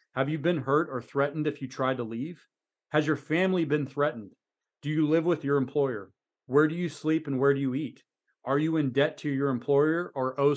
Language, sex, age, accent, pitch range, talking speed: English, male, 30-49, American, 120-145 Hz, 225 wpm